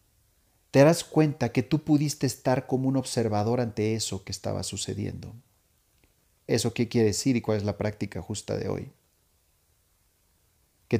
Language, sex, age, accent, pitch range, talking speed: Spanish, male, 40-59, Mexican, 95-120 Hz, 155 wpm